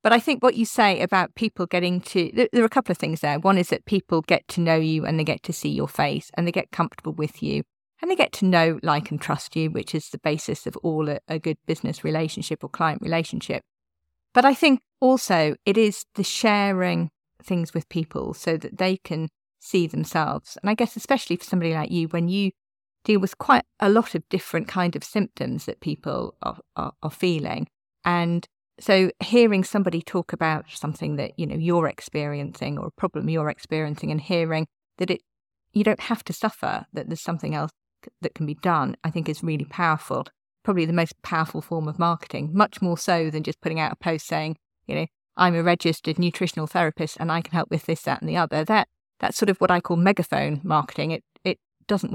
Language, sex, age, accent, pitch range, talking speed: English, female, 40-59, British, 155-195 Hz, 220 wpm